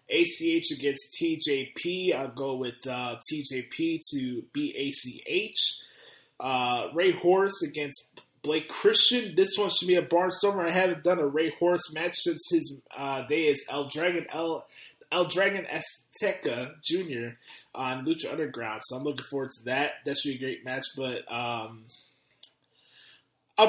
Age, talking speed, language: 20-39, 150 wpm, English